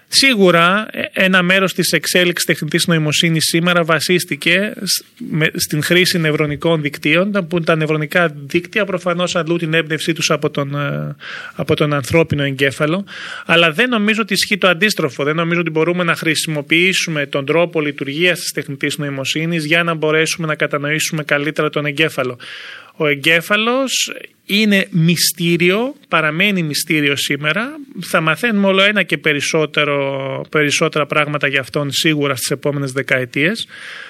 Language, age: Greek, 30-49